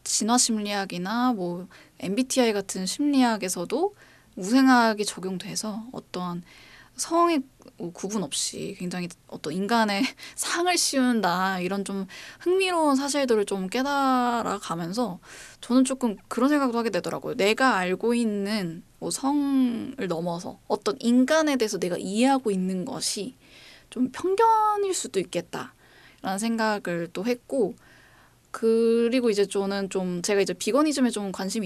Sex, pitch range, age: female, 195-260 Hz, 20-39